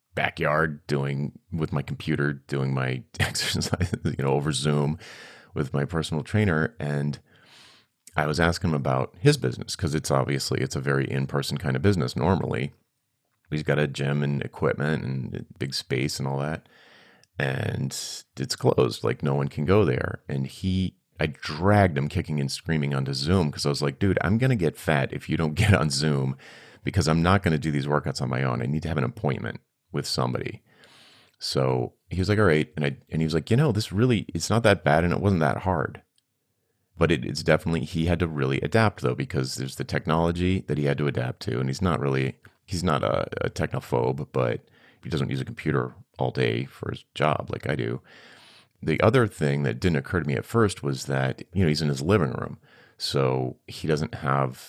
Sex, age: male, 30-49